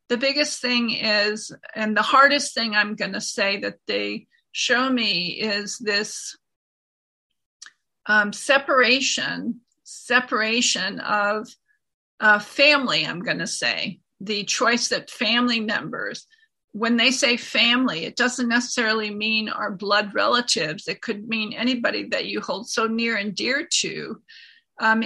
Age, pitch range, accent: 50-69, 210-250 Hz, American